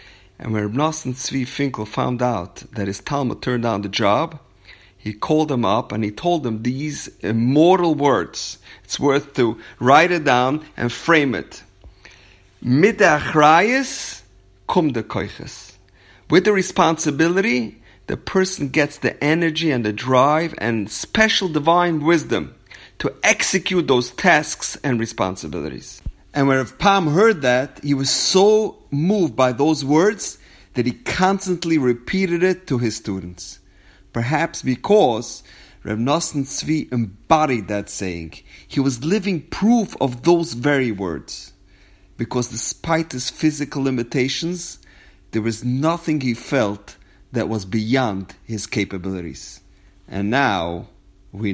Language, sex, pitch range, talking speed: English, male, 100-155 Hz, 130 wpm